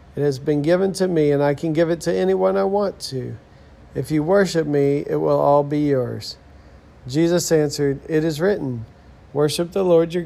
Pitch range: 135-165 Hz